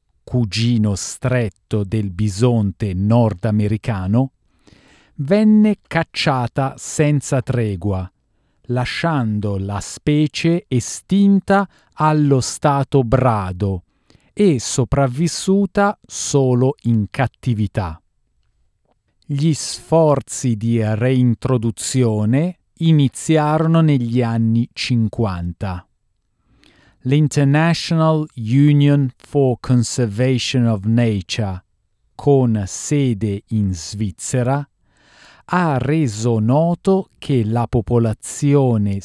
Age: 40-59